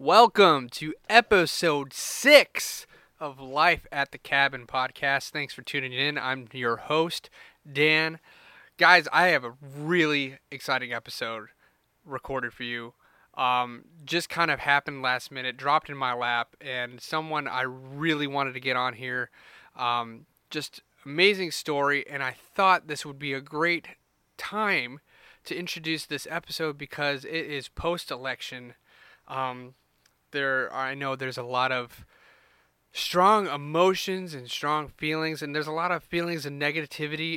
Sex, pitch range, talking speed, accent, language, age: male, 130-155 Hz, 145 wpm, American, English, 30-49